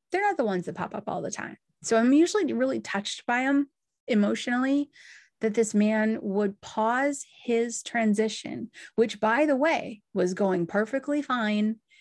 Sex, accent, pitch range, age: female, American, 195-245 Hz, 30-49